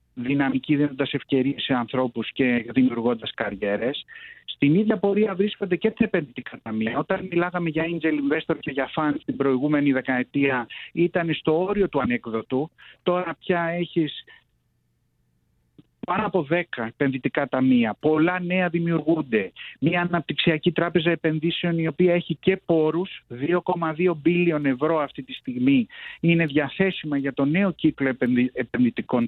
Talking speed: 130 wpm